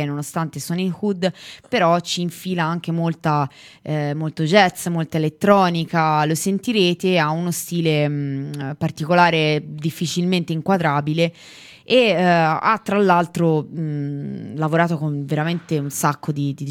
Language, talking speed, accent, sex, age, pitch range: Italian, 130 wpm, native, female, 20-39, 150-175 Hz